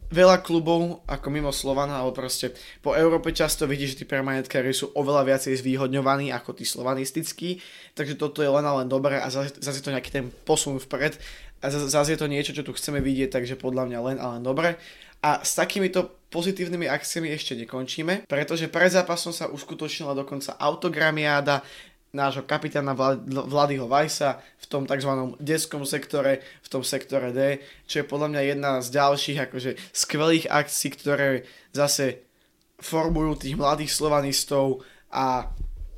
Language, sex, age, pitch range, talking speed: Slovak, male, 20-39, 135-150 Hz, 160 wpm